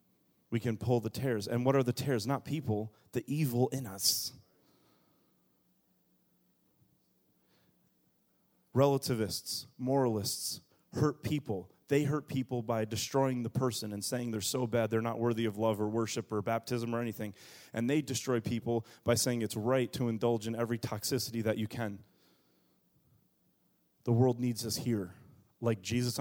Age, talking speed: 30-49, 150 wpm